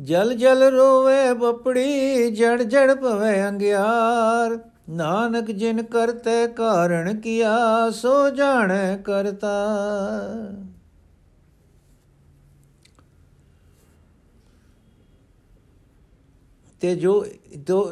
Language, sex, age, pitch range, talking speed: Punjabi, male, 60-79, 130-190 Hz, 60 wpm